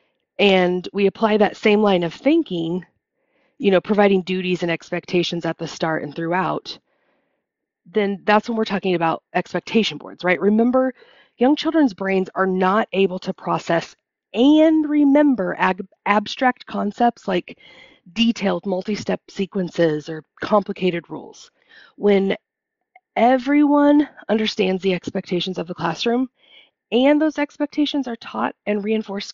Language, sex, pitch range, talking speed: English, female, 180-245 Hz, 130 wpm